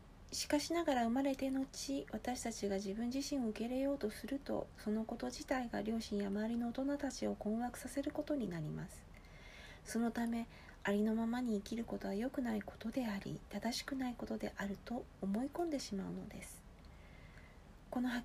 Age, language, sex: 40-59, Japanese, female